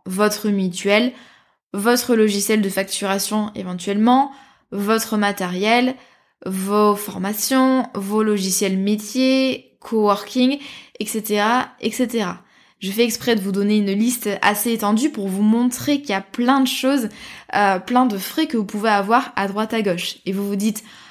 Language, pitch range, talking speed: French, 200-245 Hz, 150 wpm